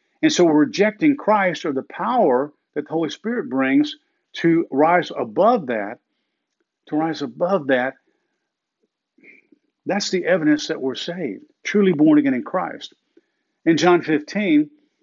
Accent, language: American, English